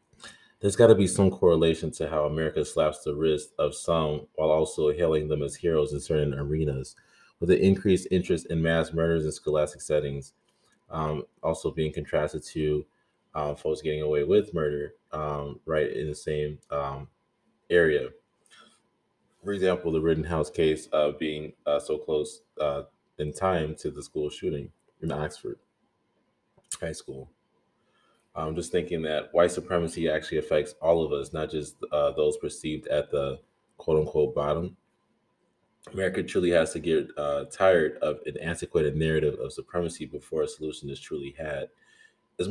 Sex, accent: male, American